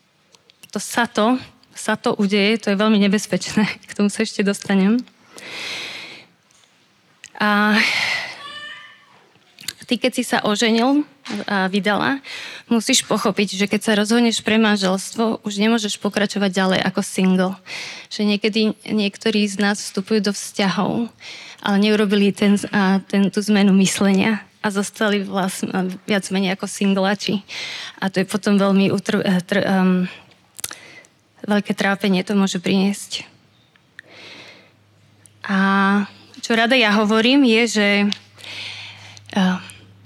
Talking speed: 120 wpm